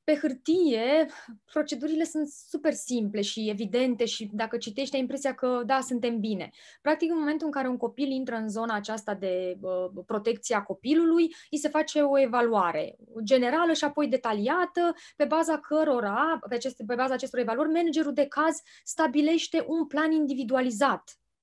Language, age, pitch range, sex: Romanian, 20-39, 230-300 Hz, female